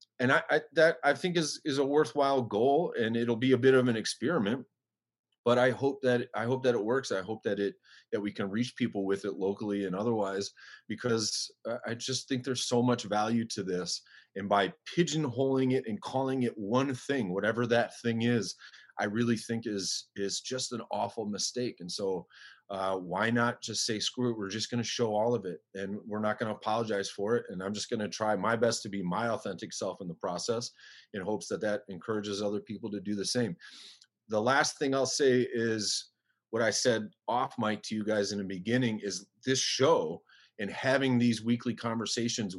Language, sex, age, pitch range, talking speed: English, male, 30-49, 100-125 Hz, 215 wpm